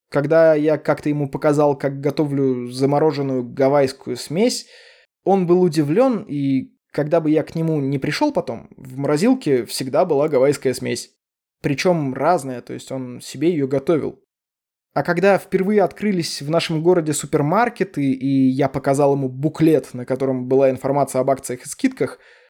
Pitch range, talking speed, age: 130-175 Hz, 150 wpm, 20-39